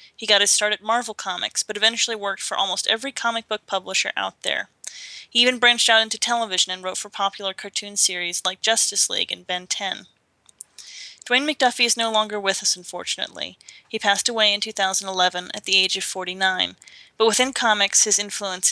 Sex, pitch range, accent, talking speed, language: female, 190-230 Hz, American, 190 wpm, English